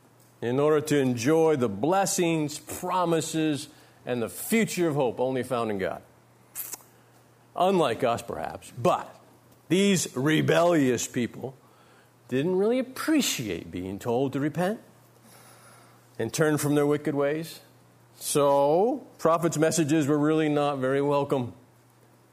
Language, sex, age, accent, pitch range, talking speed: English, male, 50-69, American, 125-180 Hz, 120 wpm